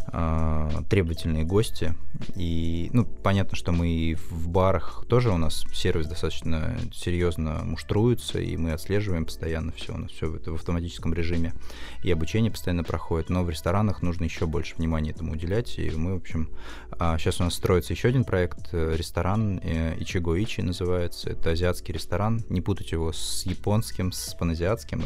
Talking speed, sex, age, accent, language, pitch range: 160 wpm, male, 20-39, native, Russian, 80-95 Hz